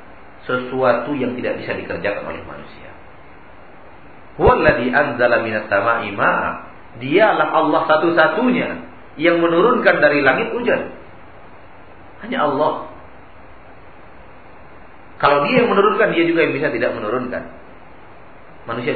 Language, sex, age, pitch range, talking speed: Malay, male, 40-59, 95-145 Hz, 90 wpm